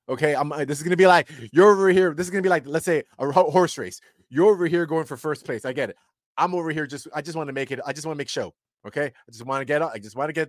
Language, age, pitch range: English, 30-49, 125-165 Hz